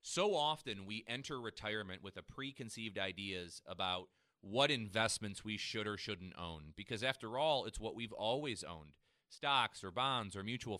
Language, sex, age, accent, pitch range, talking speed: English, male, 30-49, American, 100-135 Hz, 165 wpm